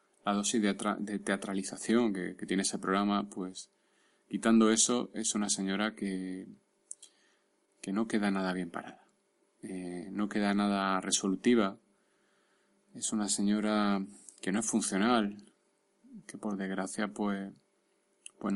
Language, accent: Spanish, Spanish